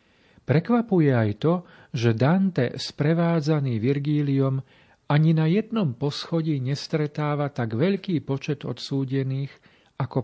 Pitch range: 115-155 Hz